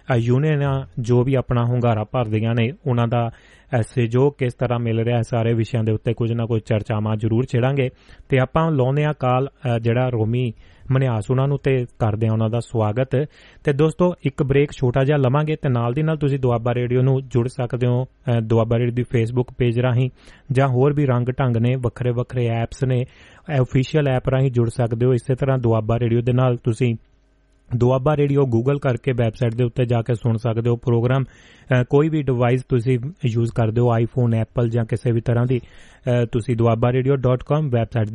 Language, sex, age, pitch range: Punjabi, male, 30-49, 115-130 Hz